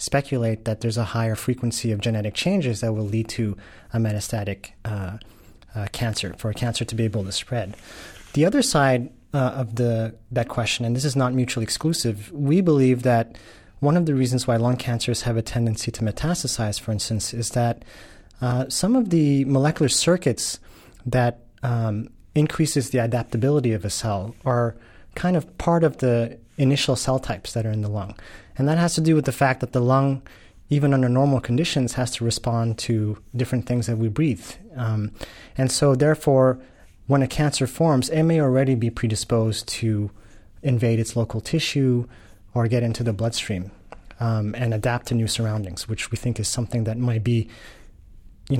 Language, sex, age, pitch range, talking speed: English, male, 30-49, 110-130 Hz, 185 wpm